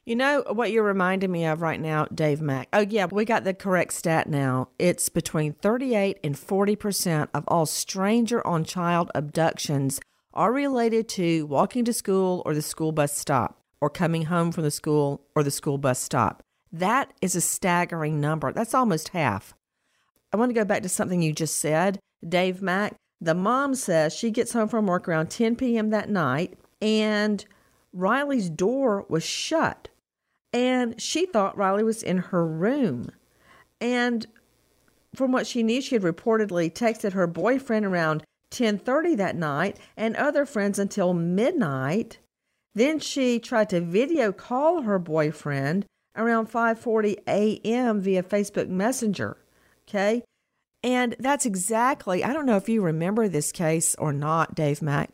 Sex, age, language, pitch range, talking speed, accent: female, 50-69, English, 160-225 Hz, 160 wpm, American